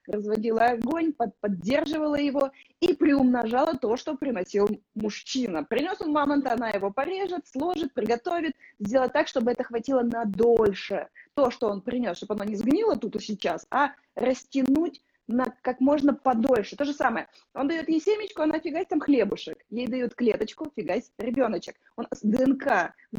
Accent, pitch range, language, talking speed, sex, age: native, 230-290 Hz, Russian, 160 wpm, female, 20-39